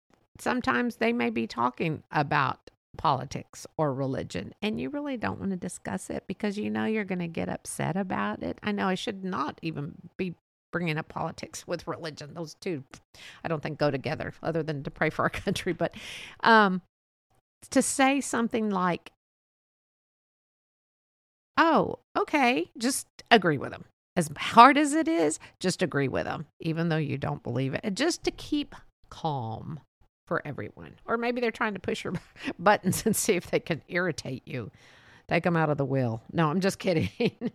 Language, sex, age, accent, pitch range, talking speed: English, female, 50-69, American, 160-220 Hz, 175 wpm